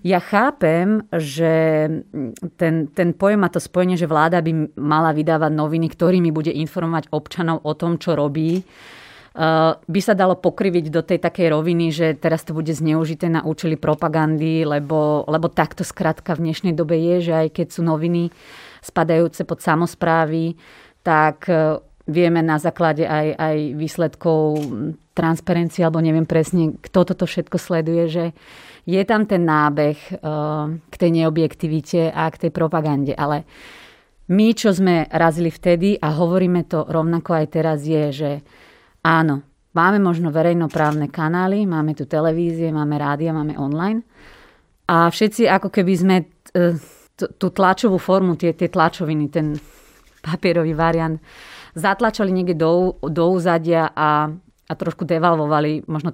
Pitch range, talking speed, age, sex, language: 155-175 Hz, 140 wpm, 30-49, female, Slovak